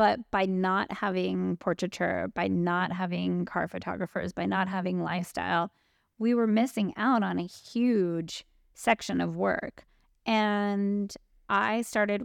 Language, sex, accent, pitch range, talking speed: English, female, American, 175-210 Hz, 130 wpm